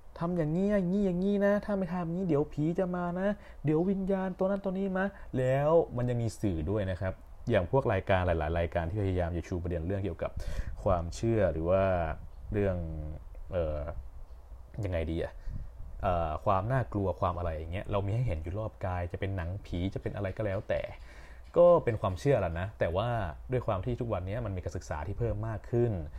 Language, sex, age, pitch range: English, male, 20-39, 85-130 Hz